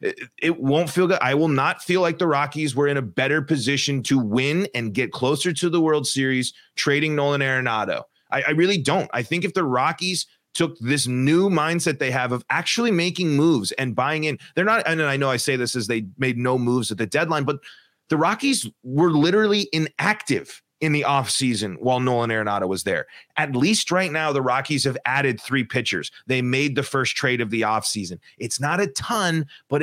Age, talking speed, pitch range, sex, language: 30-49, 205 wpm, 125-160 Hz, male, English